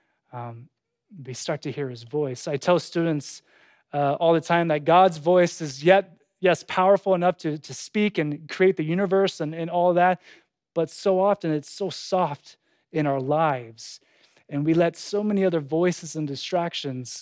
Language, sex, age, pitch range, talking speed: English, male, 20-39, 145-180 Hz, 180 wpm